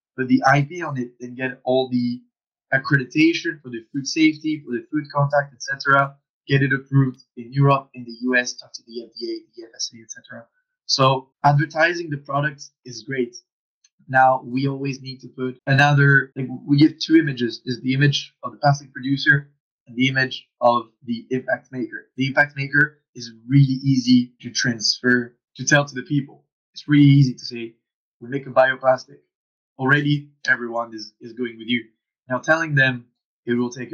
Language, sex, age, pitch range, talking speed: English, male, 20-39, 125-145 Hz, 180 wpm